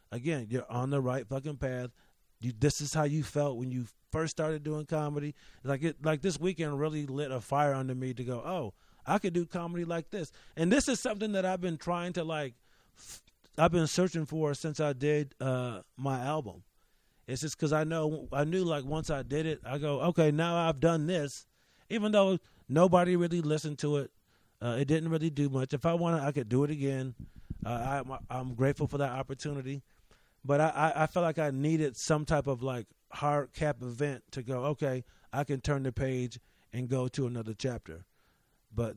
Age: 30-49